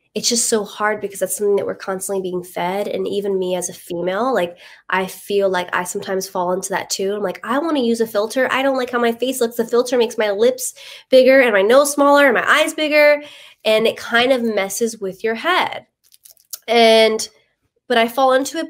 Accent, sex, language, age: American, female, English, 20-39